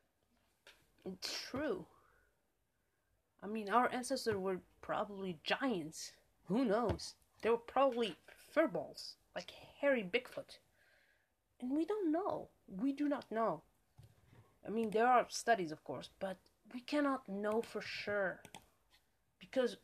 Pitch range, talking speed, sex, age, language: 185-245 Hz, 120 wpm, female, 30-49, English